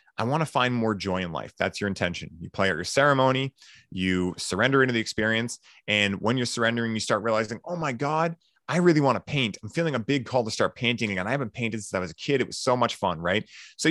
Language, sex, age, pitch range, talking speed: English, male, 30-49, 105-125 Hz, 260 wpm